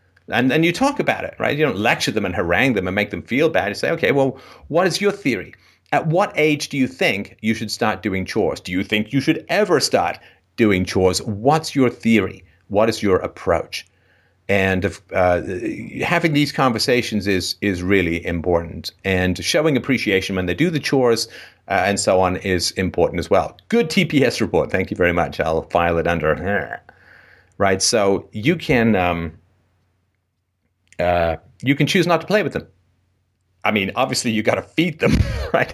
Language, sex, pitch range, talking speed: English, male, 90-125 Hz, 190 wpm